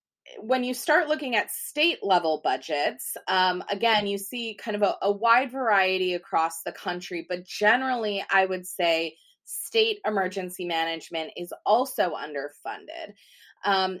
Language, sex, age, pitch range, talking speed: English, female, 20-39, 175-230 Hz, 140 wpm